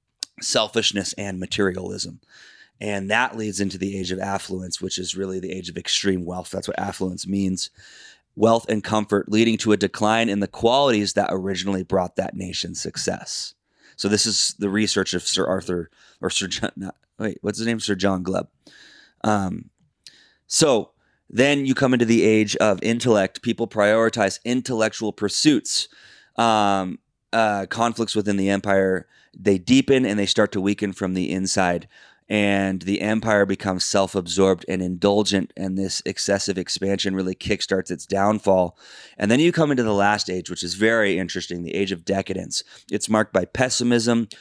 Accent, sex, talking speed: American, male, 165 wpm